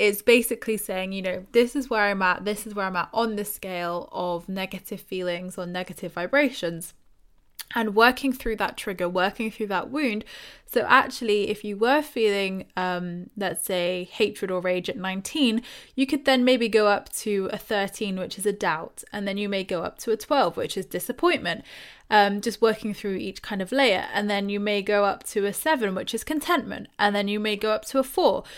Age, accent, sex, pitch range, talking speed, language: 20-39, British, female, 185-230 Hz, 210 wpm, English